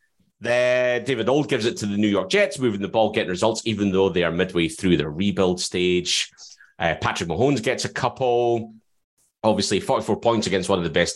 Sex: male